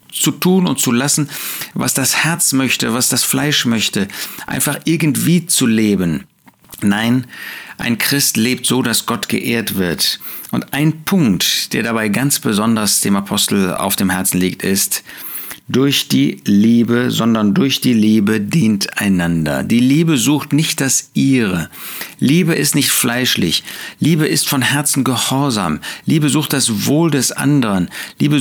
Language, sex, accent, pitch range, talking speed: German, male, German, 110-145 Hz, 150 wpm